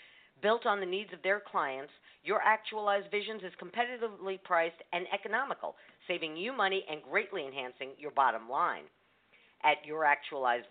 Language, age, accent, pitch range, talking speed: English, 50-69, American, 160-205 Hz, 150 wpm